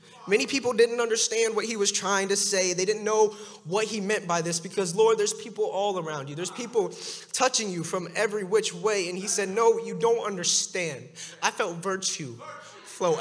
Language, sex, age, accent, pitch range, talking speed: English, male, 20-39, American, 170-215 Hz, 200 wpm